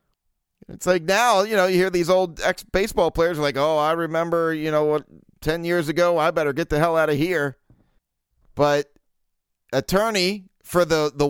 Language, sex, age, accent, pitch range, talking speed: English, male, 30-49, American, 145-165 Hz, 185 wpm